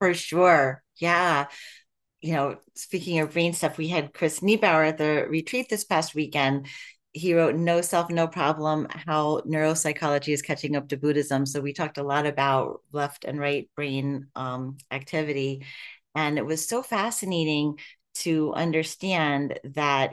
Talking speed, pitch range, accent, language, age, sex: 155 wpm, 150-175 Hz, American, English, 30-49, female